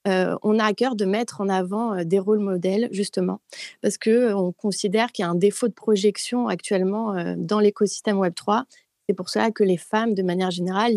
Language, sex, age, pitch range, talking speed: French, female, 30-49, 190-230 Hz, 215 wpm